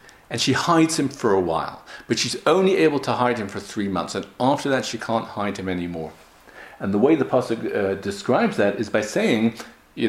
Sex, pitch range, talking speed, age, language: male, 95-125 Hz, 220 wpm, 50-69, English